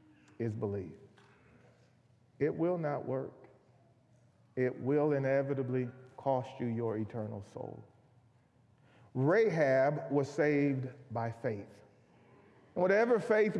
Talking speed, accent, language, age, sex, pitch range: 95 wpm, American, English, 40-59, male, 135-200 Hz